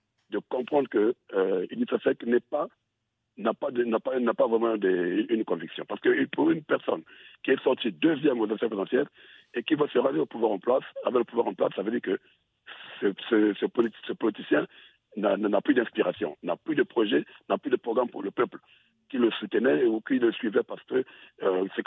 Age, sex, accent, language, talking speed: 60-79, male, French, French, 220 wpm